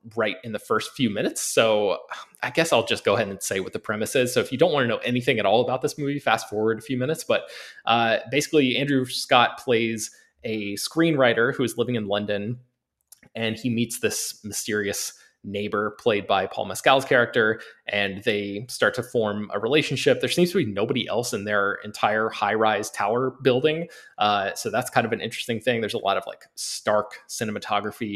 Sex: male